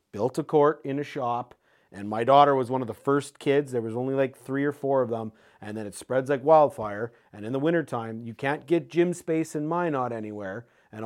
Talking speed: 235 wpm